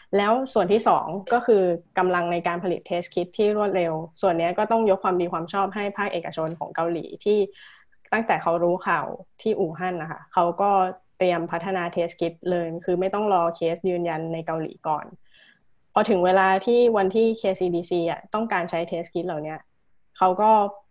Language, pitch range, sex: Thai, 170-200 Hz, female